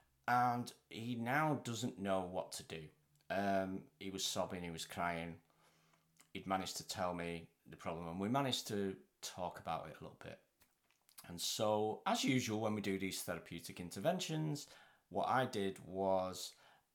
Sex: male